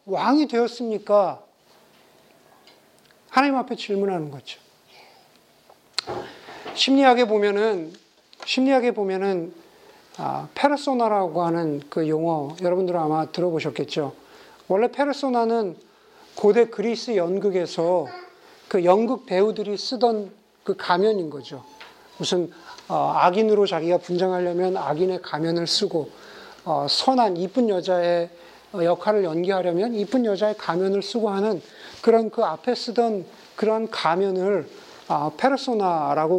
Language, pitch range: Korean, 180-250 Hz